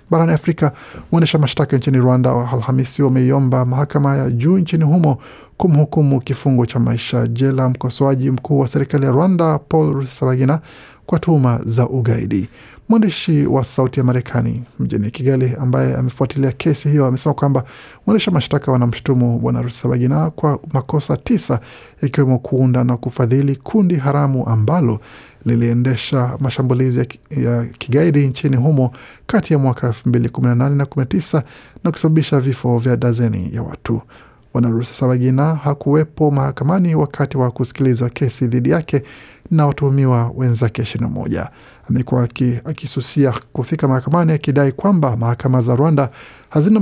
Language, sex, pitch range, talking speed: Swahili, male, 125-150 Hz, 135 wpm